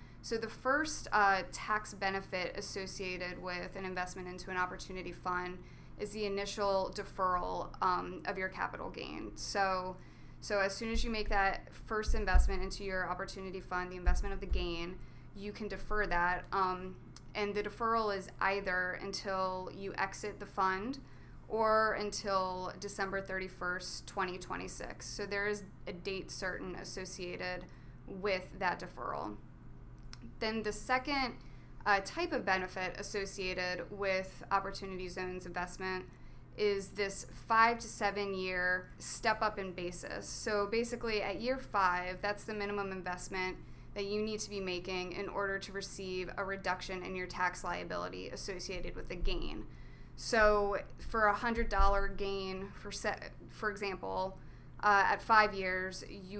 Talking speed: 145 wpm